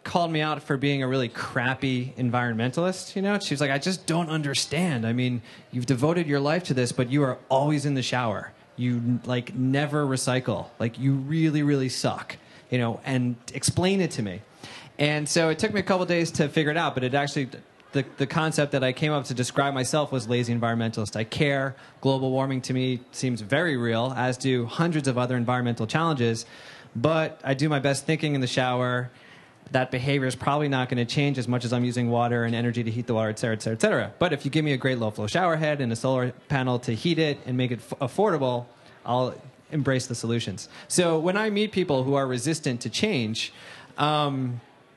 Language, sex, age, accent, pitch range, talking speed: English, male, 20-39, American, 125-150 Hz, 220 wpm